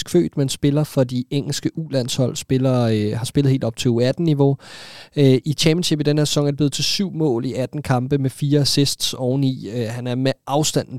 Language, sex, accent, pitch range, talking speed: Danish, male, native, 125-155 Hz, 205 wpm